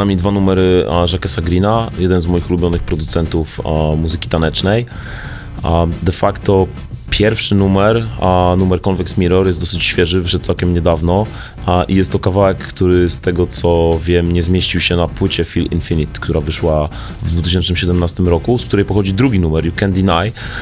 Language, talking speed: English, 165 wpm